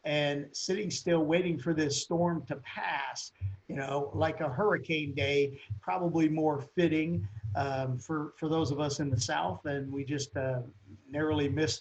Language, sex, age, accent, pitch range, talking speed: English, male, 50-69, American, 140-170 Hz, 170 wpm